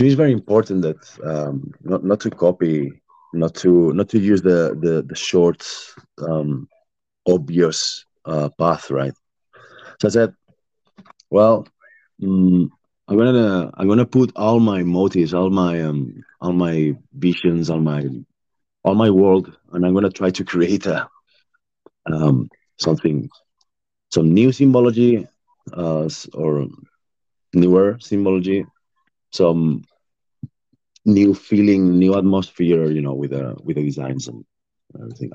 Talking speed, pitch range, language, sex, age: 130 wpm, 80-95 Hz, English, male, 30-49